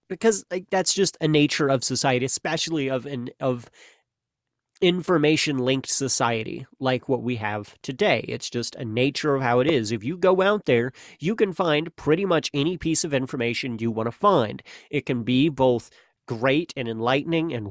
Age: 30-49